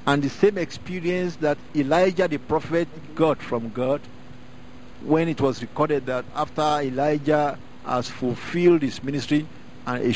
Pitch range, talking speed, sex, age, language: 125-150 Hz, 140 wpm, male, 50-69, English